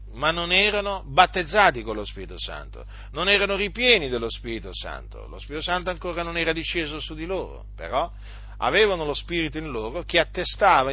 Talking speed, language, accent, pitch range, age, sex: 175 wpm, Italian, native, 100-150 Hz, 40-59, male